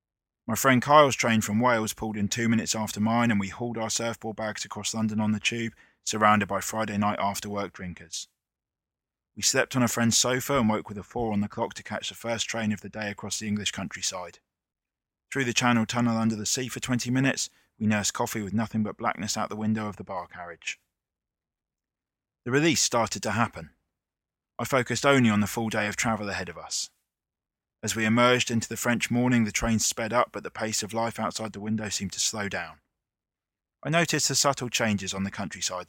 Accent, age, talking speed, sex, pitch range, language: British, 20-39, 210 wpm, male, 105-120 Hz, English